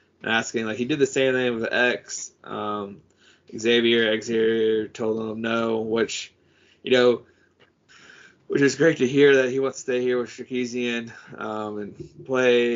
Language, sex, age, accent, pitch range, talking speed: English, male, 20-39, American, 115-135 Hz, 155 wpm